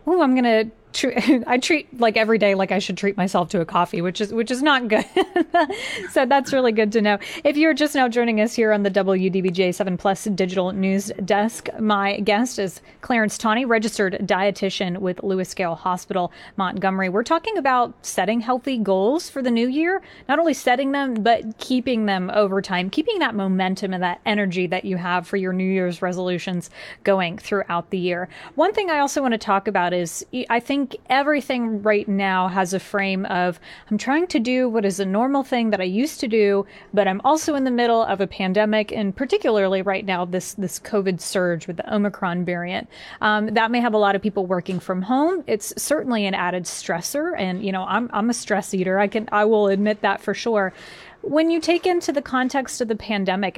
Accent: American